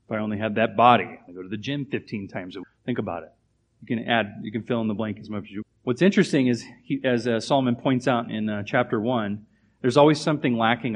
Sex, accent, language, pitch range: male, American, English, 110-130 Hz